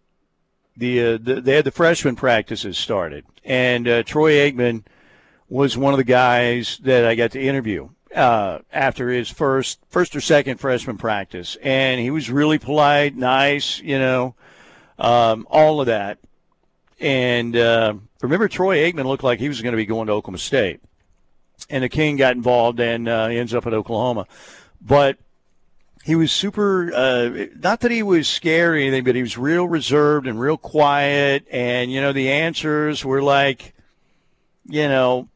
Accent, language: American, English